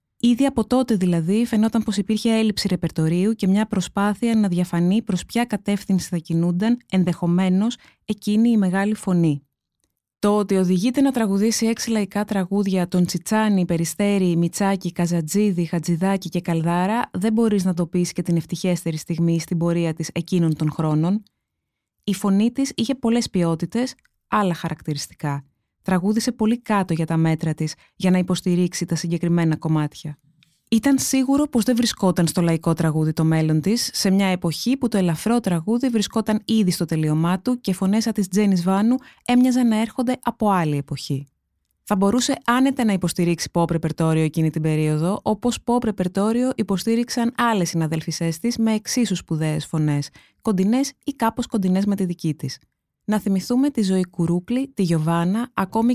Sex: female